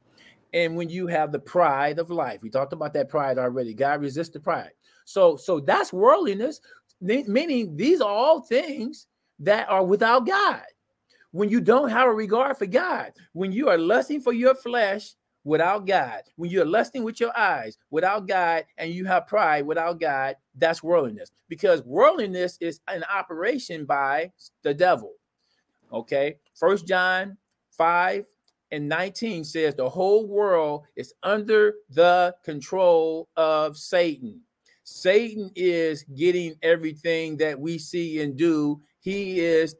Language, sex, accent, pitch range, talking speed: English, male, American, 150-210 Hz, 150 wpm